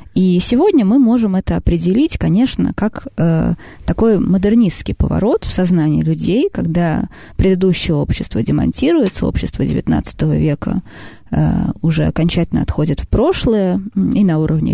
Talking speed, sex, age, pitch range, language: 125 wpm, female, 20-39, 170-225 Hz, Russian